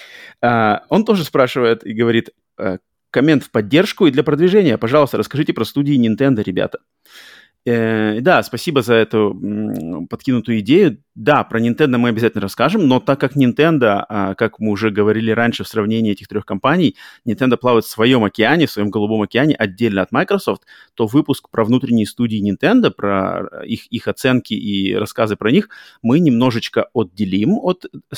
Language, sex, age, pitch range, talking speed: Russian, male, 30-49, 105-135 Hz, 160 wpm